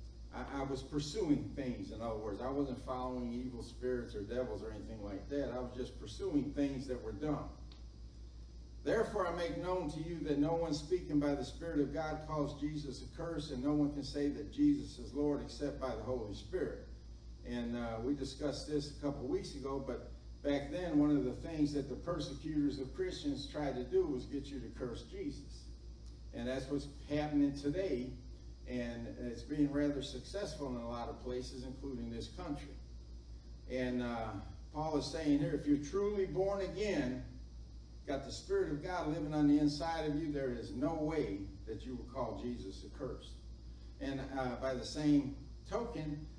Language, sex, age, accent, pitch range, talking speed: English, male, 50-69, American, 115-150 Hz, 190 wpm